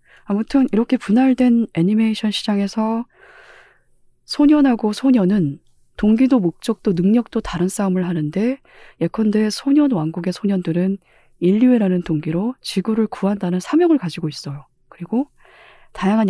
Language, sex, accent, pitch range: Korean, female, native, 175-235 Hz